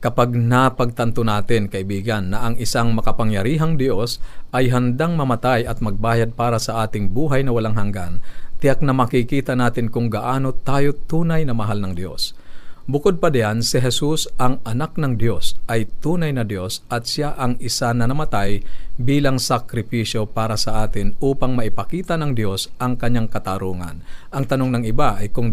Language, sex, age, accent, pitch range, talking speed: Filipino, male, 50-69, native, 110-130 Hz, 165 wpm